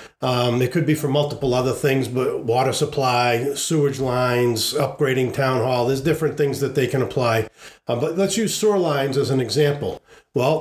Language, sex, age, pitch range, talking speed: English, male, 50-69, 135-165 Hz, 185 wpm